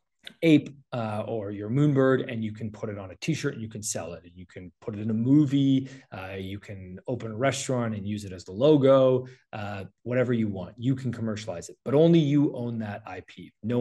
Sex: male